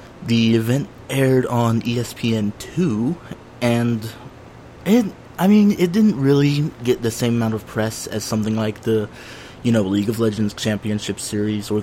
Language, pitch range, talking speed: English, 110-140 Hz, 150 wpm